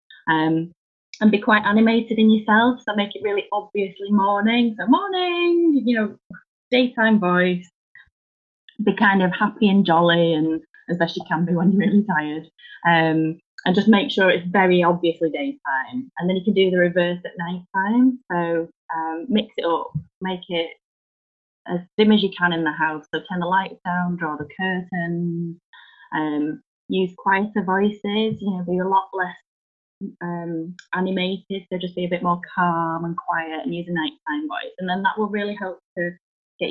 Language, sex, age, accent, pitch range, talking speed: English, female, 20-39, British, 170-205 Hz, 185 wpm